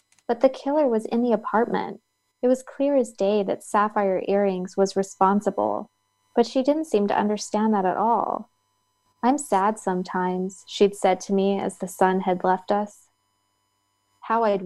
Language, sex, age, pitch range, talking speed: English, female, 20-39, 180-200 Hz, 170 wpm